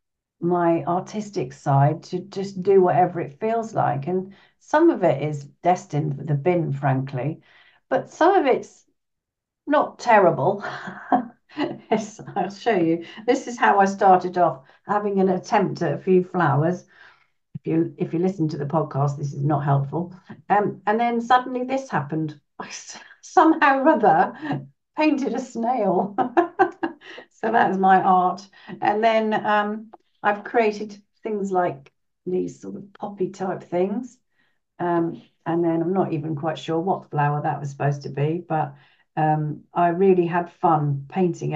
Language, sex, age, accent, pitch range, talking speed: English, female, 50-69, British, 155-210 Hz, 155 wpm